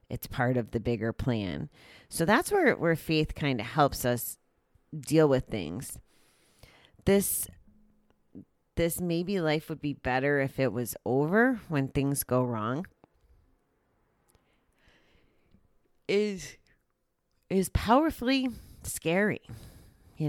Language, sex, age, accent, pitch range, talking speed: English, female, 30-49, American, 120-145 Hz, 110 wpm